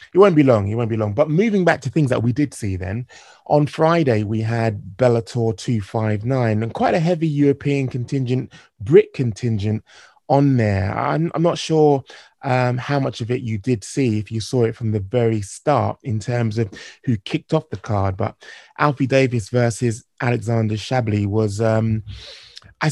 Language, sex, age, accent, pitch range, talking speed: English, male, 20-39, British, 115-150 Hz, 190 wpm